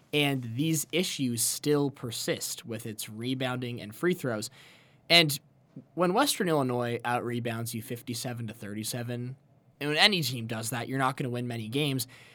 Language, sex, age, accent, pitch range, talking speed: English, male, 20-39, American, 120-150 Hz, 155 wpm